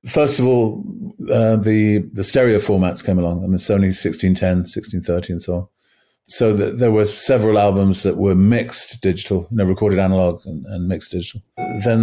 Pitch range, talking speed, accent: 95-105 Hz, 180 wpm, British